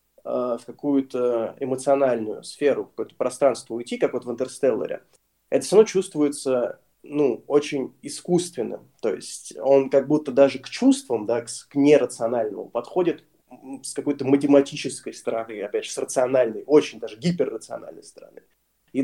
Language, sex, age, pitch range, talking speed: Ukrainian, male, 20-39, 125-160 Hz, 140 wpm